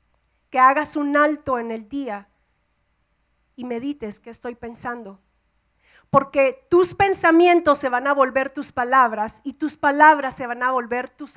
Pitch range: 250-315 Hz